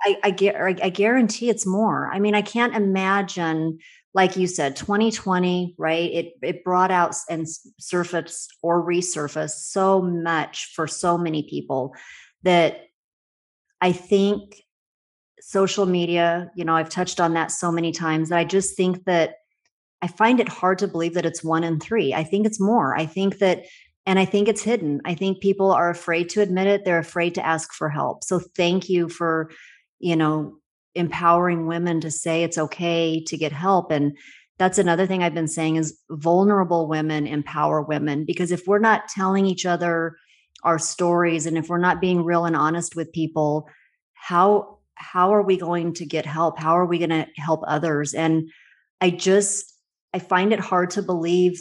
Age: 30-49